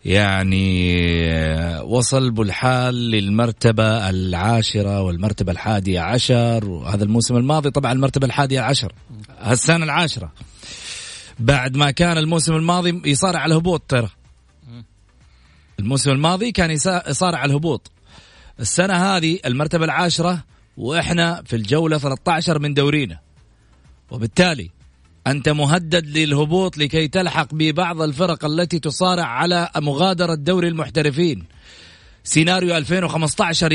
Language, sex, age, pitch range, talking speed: Arabic, male, 30-49, 110-170 Hz, 105 wpm